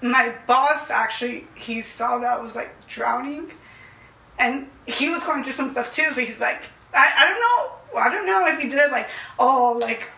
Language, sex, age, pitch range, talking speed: English, female, 10-29, 235-275 Hz, 200 wpm